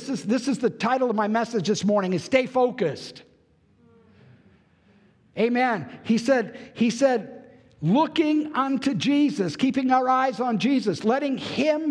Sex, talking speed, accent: male, 135 wpm, American